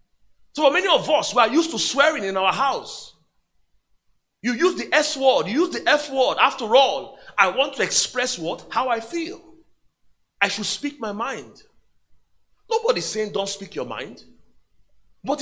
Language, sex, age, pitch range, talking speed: English, male, 40-59, 220-315 Hz, 170 wpm